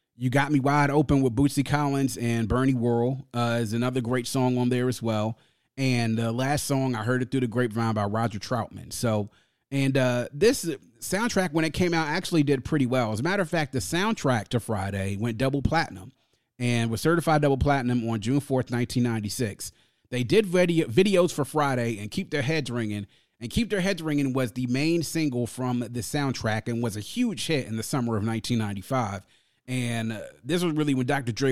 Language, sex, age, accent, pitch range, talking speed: English, male, 30-49, American, 115-145 Hz, 205 wpm